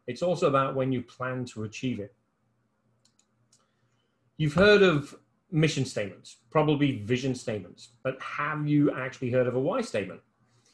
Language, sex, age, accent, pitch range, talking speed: English, male, 40-59, British, 120-150 Hz, 145 wpm